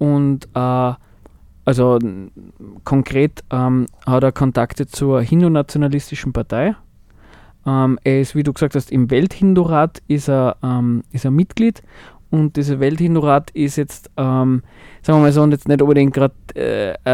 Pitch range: 130-150 Hz